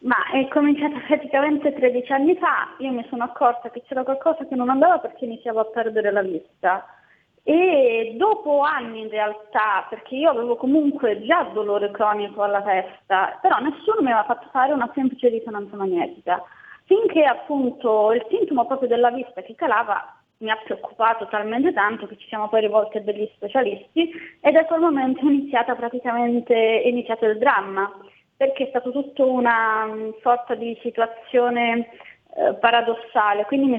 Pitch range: 215-275 Hz